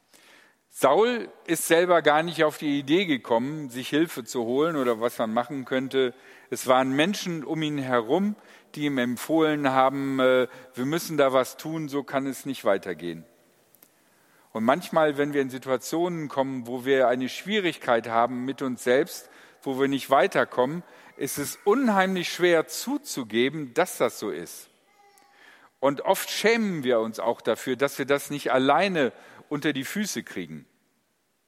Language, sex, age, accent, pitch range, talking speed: German, male, 50-69, German, 130-170 Hz, 155 wpm